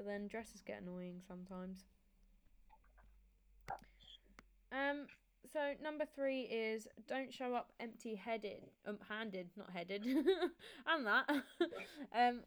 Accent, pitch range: British, 195-245 Hz